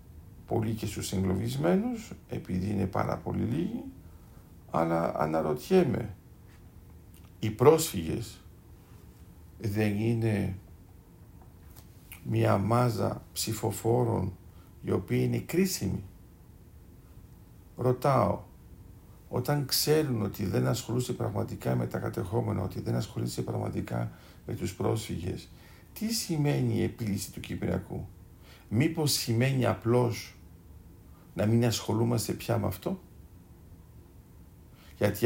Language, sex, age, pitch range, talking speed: Greek, male, 50-69, 90-120 Hz, 95 wpm